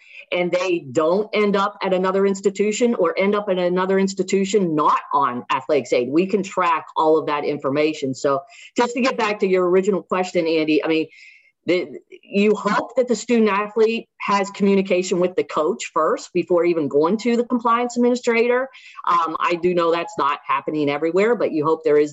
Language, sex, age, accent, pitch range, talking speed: English, female, 40-59, American, 165-210 Hz, 185 wpm